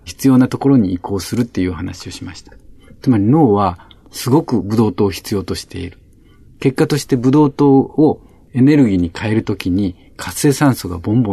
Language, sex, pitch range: Japanese, male, 95-130 Hz